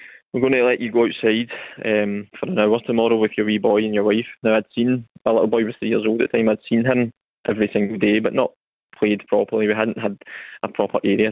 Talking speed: 255 wpm